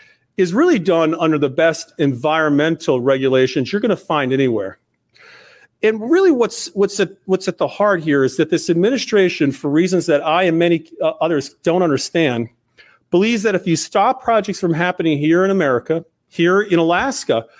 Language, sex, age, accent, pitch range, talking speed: English, male, 40-59, American, 155-195 Hz, 175 wpm